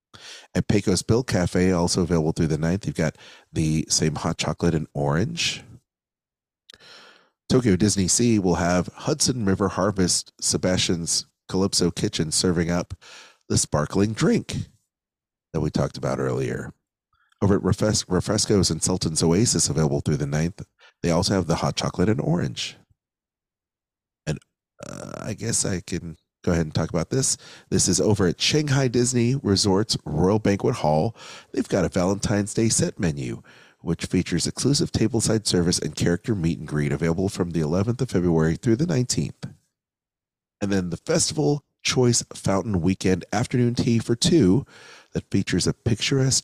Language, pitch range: English, 85-110 Hz